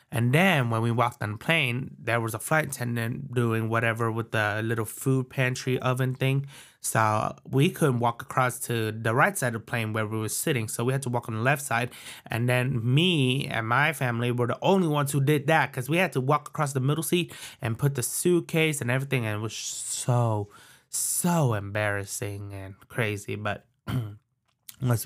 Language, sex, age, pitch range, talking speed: English, male, 20-39, 110-140 Hz, 205 wpm